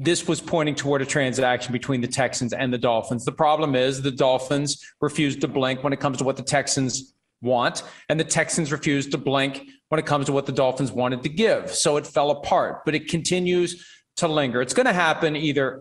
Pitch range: 140-185 Hz